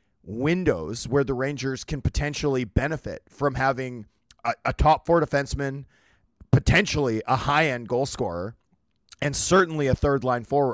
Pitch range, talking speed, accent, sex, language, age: 120-145 Hz, 145 wpm, American, male, English, 30-49